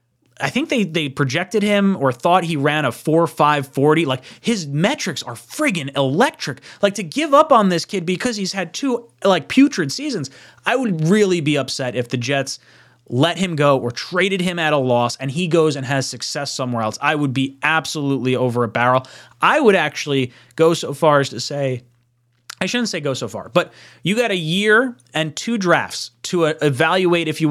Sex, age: male, 30-49